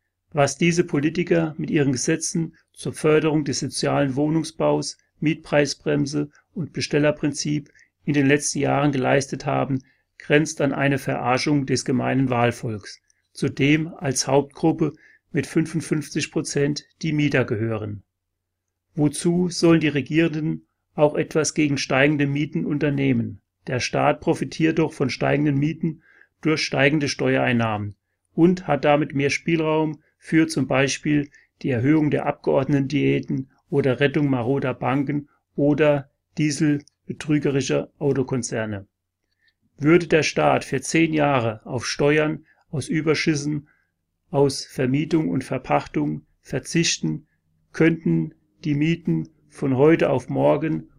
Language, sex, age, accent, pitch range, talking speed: German, male, 40-59, German, 130-155 Hz, 115 wpm